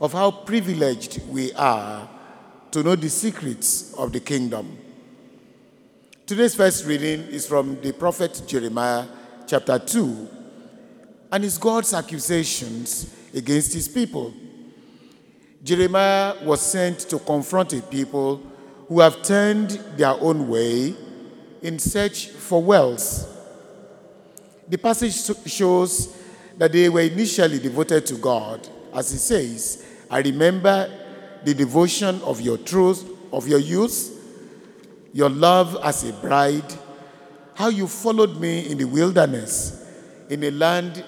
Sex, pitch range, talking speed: male, 145-200 Hz, 125 wpm